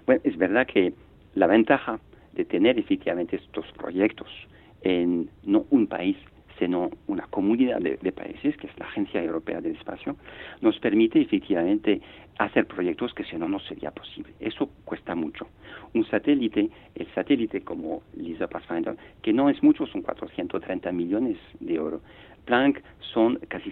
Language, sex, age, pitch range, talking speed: Spanish, male, 50-69, 265-320 Hz, 155 wpm